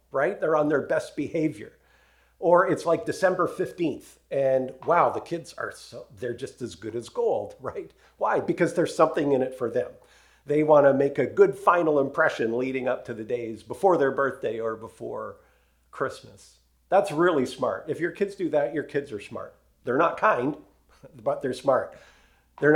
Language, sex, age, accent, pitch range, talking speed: English, male, 50-69, American, 100-160 Hz, 185 wpm